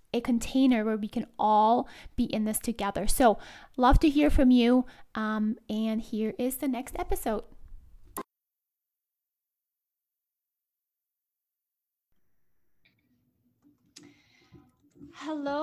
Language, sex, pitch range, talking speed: English, female, 235-285 Hz, 90 wpm